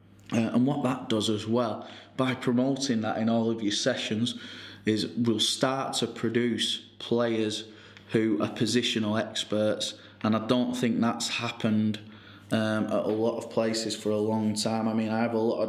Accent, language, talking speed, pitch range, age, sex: British, English, 185 wpm, 105-115 Hz, 20-39, male